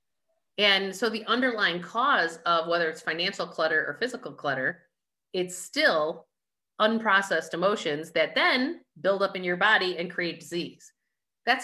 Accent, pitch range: American, 175-240 Hz